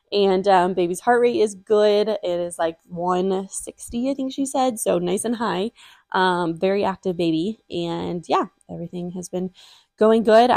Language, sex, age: English, female, 20-39